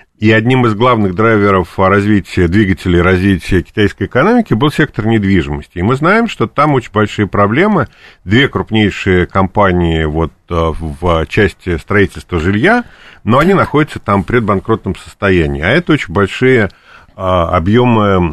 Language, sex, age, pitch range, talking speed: Russian, male, 40-59, 90-115 Hz, 130 wpm